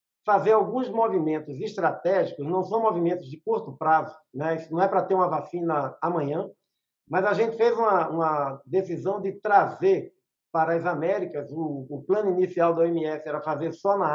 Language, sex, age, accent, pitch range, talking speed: Portuguese, male, 60-79, Brazilian, 155-190 Hz, 180 wpm